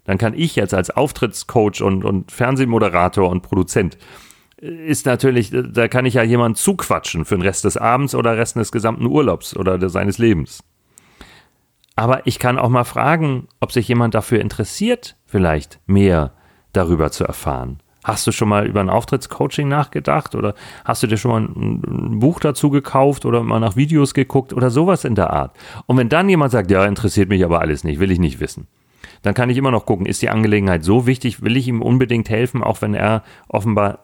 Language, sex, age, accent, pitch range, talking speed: German, male, 40-59, German, 95-125 Hz, 195 wpm